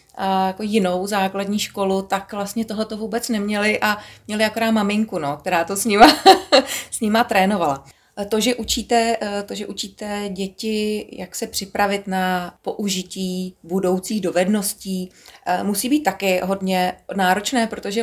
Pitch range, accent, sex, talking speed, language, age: 175-205 Hz, native, female, 140 wpm, Czech, 30-49